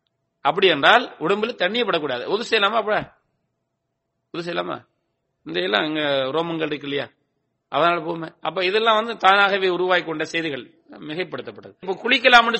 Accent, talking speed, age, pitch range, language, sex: Indian, 115 wpm, 30-49, 170-230 Hz, English, male